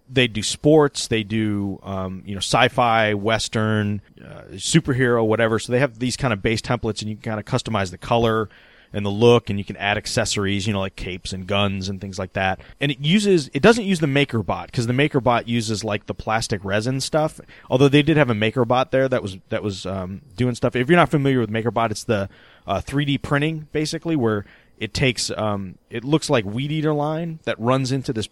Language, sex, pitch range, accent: English, male, 105-130 Hz, American